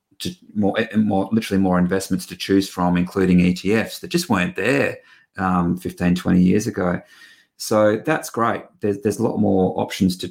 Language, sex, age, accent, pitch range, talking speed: English, male, 30-49, Australian, 90-110 Hz, 175 wpm